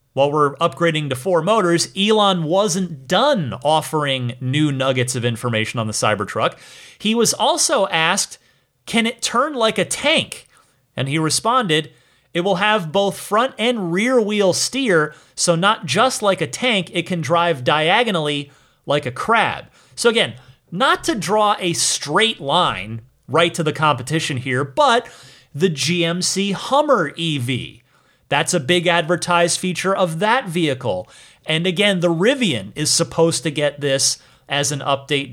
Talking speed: 155 wpm